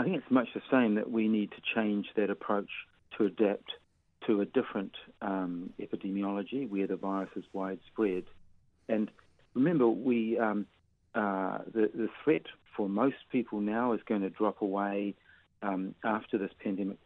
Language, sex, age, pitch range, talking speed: English, male, 40-59, 100-115 Hz, 160 wpm